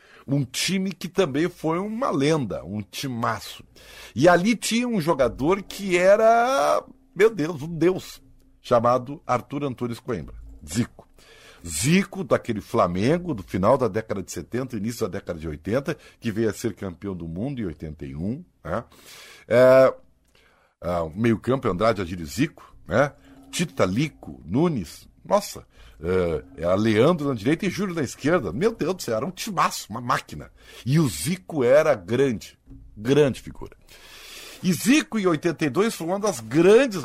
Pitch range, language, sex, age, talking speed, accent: 115-185 Hz, Portuguese, male, 60-79, 145 wpm, Brazilian